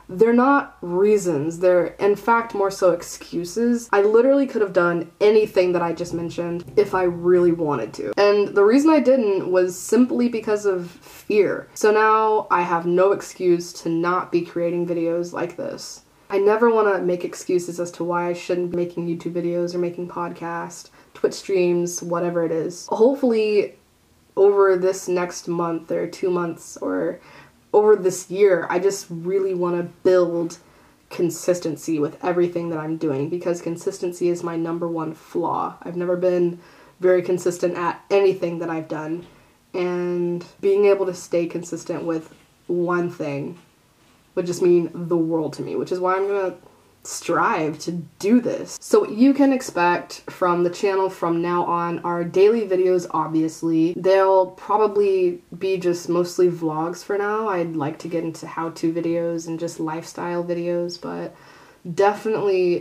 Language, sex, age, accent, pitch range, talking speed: English, female, 20-39, American, 170-195 Hz, 165 wpm